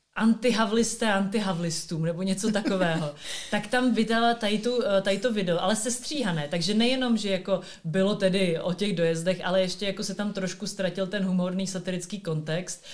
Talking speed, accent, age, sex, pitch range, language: 160 wpm, native, 30-49, female, 165-200 Hz, Czech